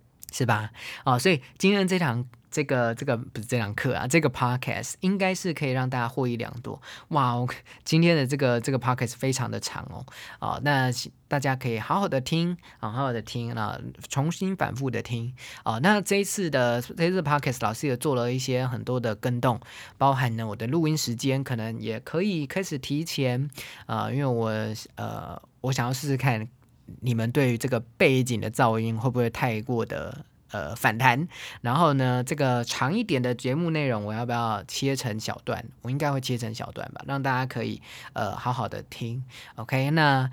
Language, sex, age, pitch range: Chinese, male, 20-39, 120-140 Hz